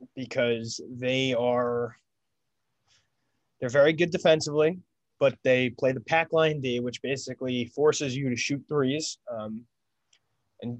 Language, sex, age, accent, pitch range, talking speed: English, male, 20-39, American, 115-135 Hz, 130 wpm